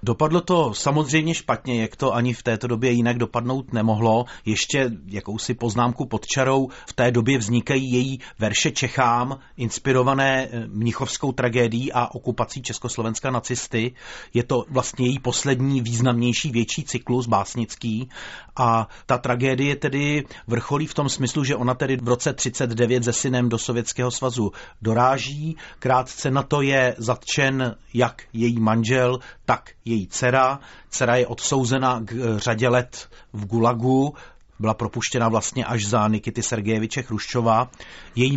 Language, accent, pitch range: Czech, native, 115-135 Hz